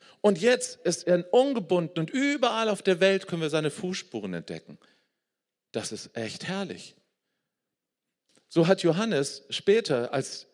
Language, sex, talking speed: German, male, 135 wpm